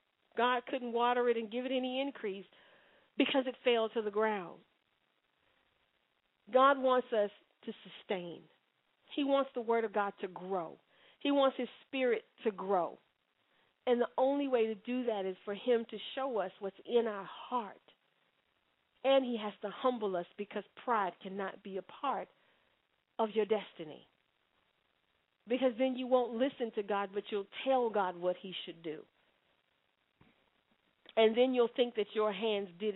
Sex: female